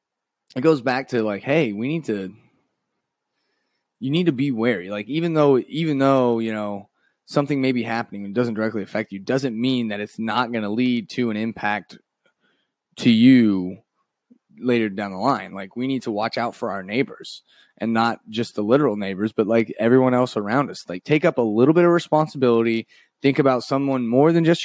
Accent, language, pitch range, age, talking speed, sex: American, English, 115-145 Hz, 20-39, 200 wpm, male